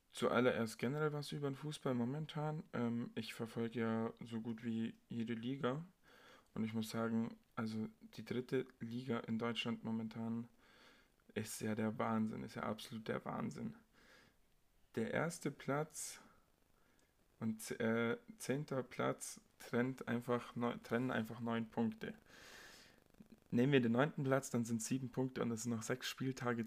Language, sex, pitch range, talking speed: German, male, 115-125 Hz, 140 wpm